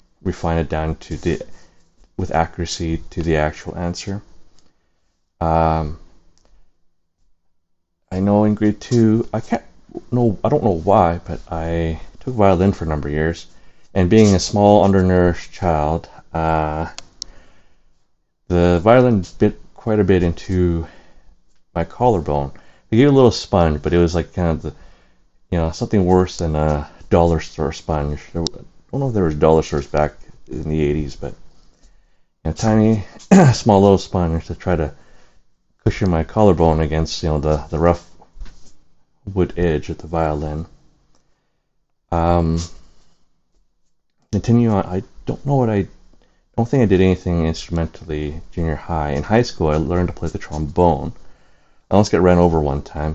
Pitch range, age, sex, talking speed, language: 80-95 Hz, 30-49, male, 155 wpm, English